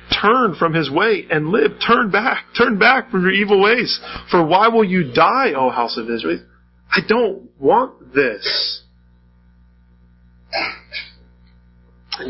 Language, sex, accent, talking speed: English, male, American, 135 wpm